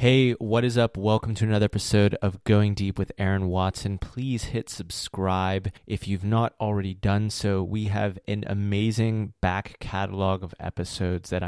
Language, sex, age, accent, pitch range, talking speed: English, male, 20-39, American, 95-110 Hz, 165 wpm